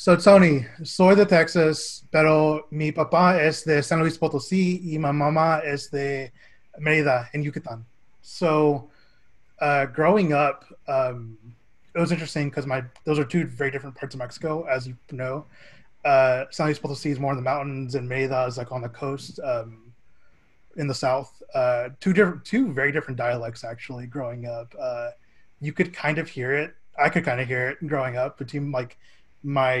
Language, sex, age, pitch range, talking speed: English, male, 20-39, 125-155 Hz, 180 wpm